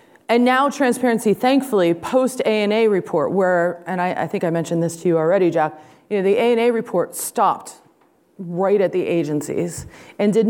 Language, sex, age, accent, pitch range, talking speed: English, female, 30-49, American, 165-210 Hz, 170 wpm